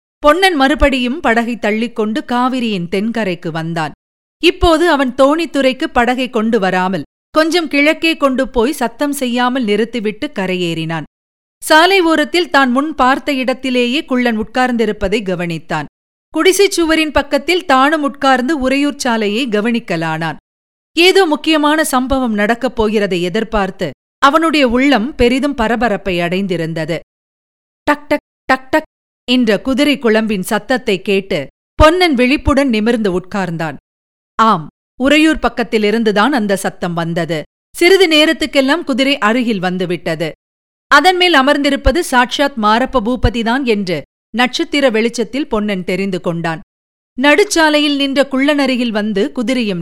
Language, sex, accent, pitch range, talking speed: Tamil, female, native, 200-290 Hz, 100 wpm